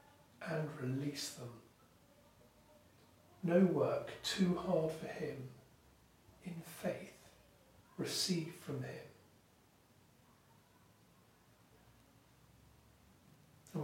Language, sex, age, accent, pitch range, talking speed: English, male, 40-59, British, 130-170 Hz, 65 wpm